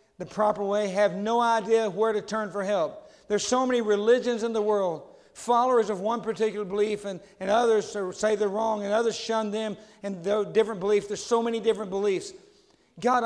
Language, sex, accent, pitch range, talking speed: English, male, American, 135-210 Hz, 195 wpm